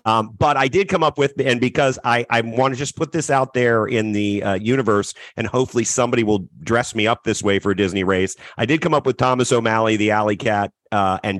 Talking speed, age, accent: 240 wpm, 40-59, American